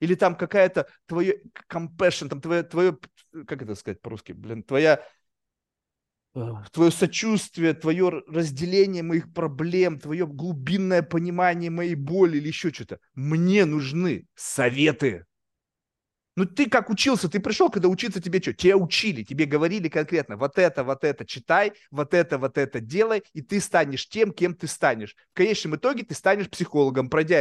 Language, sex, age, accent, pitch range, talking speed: Russian, male, 30-49, native, 145-185 Hz, 150 wpm